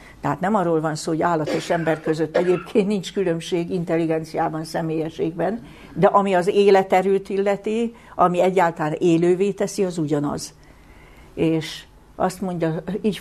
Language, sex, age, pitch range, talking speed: Hungarian, female, 60-79, 155-185 Hz, 135 wpm